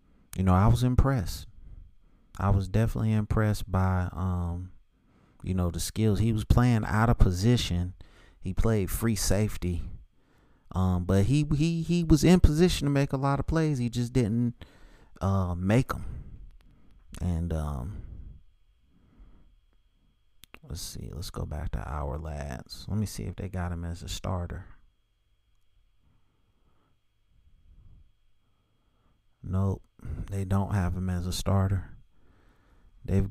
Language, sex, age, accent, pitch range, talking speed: English, male, 30-49, American, 90-105 Hz, 135 wpm